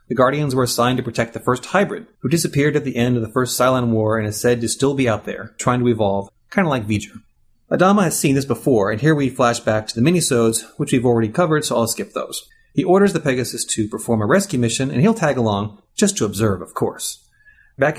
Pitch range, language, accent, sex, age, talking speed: 115-165 Hz, English, American, male, 30-49, 245 wpm